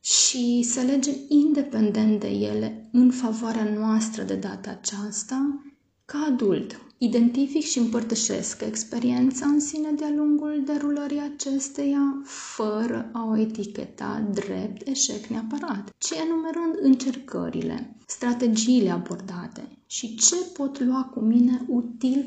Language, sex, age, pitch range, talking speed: Romanian, female, 20-39, 225-275 Hz, 115 wpm